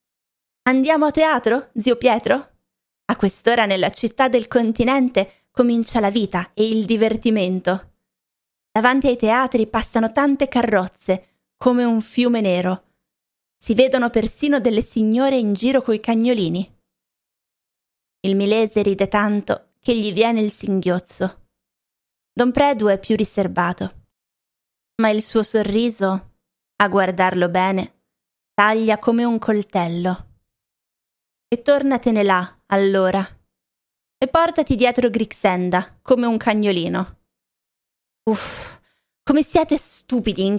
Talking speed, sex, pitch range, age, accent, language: 115 wpm, female, 195-250 Hz, 20-39, native, Italian